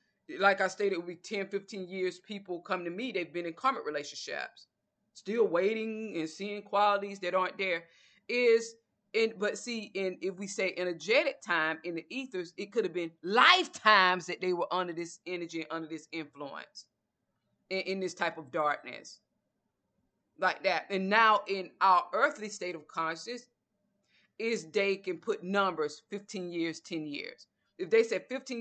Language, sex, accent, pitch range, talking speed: English, female, American, 170-210 Hz, 170 wpm